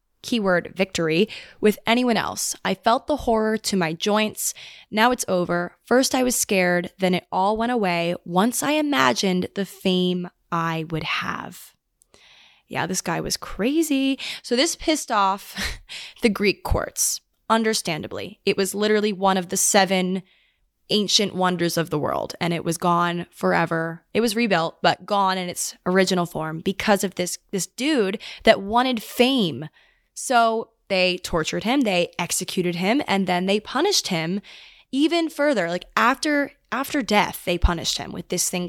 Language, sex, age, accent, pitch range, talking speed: English, female, 20-39, American, 180-230 Hz, 160 wpm